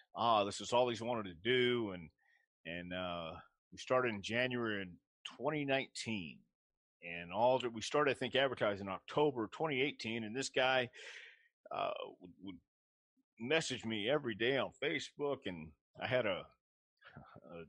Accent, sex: American, male